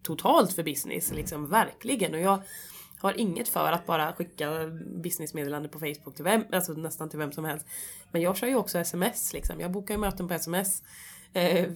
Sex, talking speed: female, 195 wpm